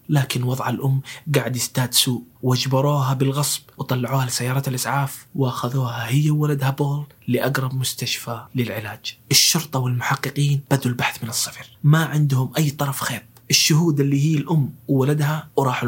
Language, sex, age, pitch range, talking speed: Arabic, male, 20-39, 125-150 Hz, 130 wpm